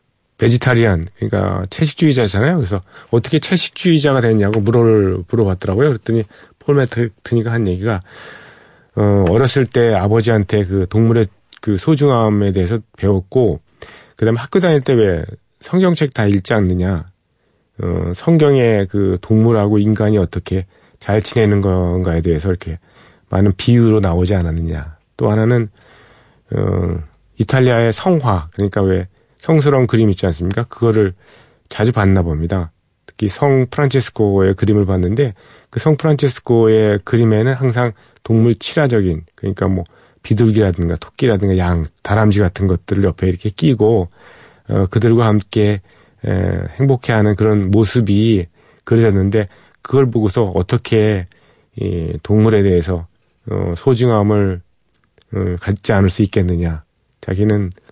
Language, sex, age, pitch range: Korean, male, 40-59, 95-115 Hz